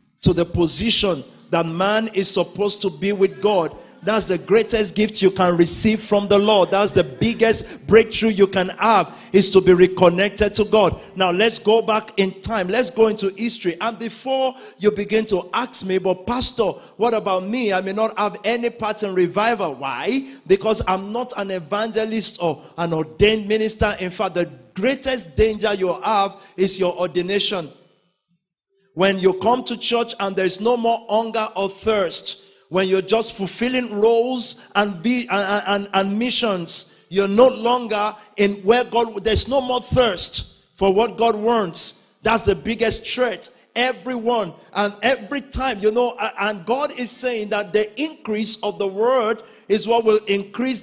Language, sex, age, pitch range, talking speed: English, male, 50-69, 190-230 Hz, 170 wpm